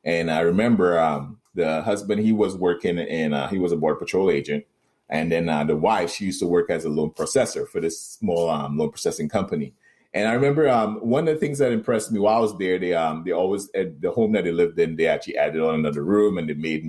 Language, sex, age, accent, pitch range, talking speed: English, male, 30-49, American, 80-95 Hz, 250 wpm